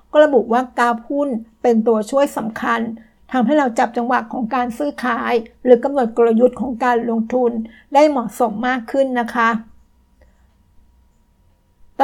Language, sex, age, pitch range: Thai, female, 60-79, 225-265 Hz